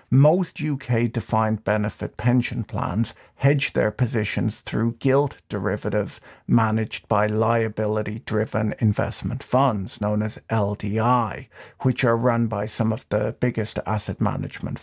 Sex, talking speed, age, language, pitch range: male, 115 wpm, 50-69, English, 105-130 Hz